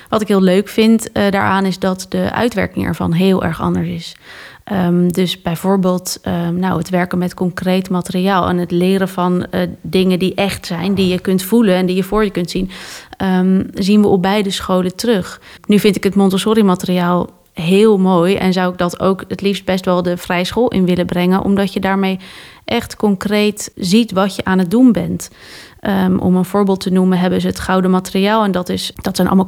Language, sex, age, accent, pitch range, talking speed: Dutch, female, 30-49, Dutch, 180-200 Hz, 205 wpm